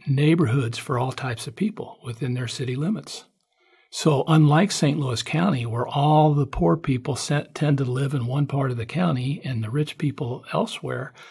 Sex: male